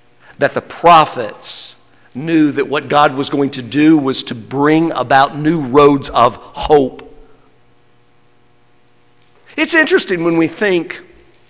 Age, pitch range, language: 50-69, 125-190 Hz, English